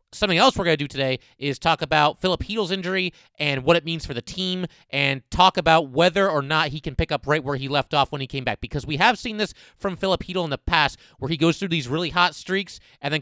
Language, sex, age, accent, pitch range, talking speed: English, male, 30-49, American, 130-165 Hz, 270 wpm